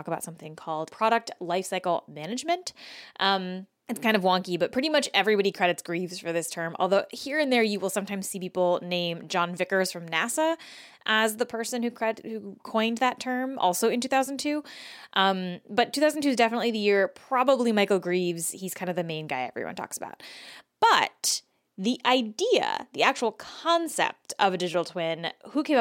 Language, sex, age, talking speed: English, female, 20-39, 175 wpm